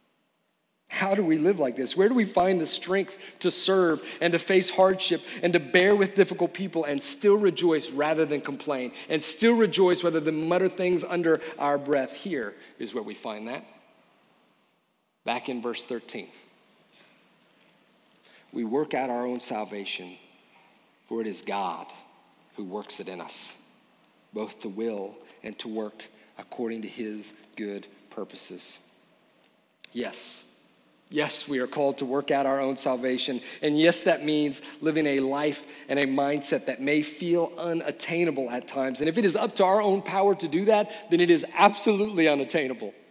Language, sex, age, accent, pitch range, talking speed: English, male, 40-59, American, 130-180 Hz, 165 wpm